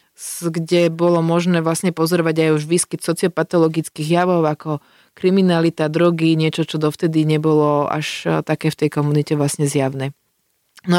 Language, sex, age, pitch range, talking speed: Slovak, female, 30-49, 155-175 Hz, 135 wpm